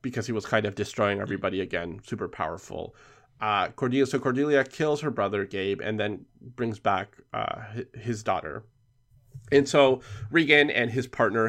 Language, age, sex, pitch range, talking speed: English, 20-39, male, 105-130 Hz, 160 wpm